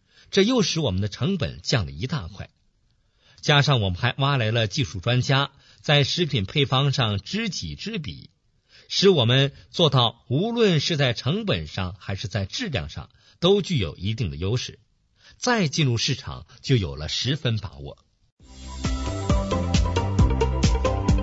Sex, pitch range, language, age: male, 95-145 Hz, Chinese, 50-69